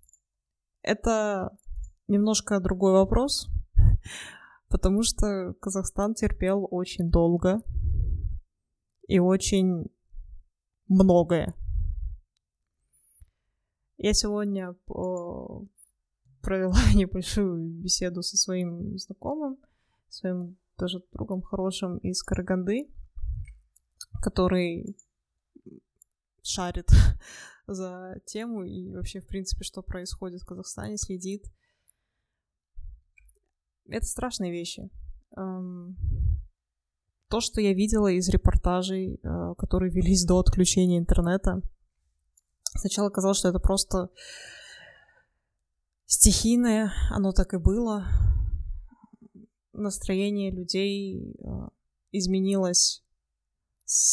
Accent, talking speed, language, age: native, 75 wpm, Russian, 20-39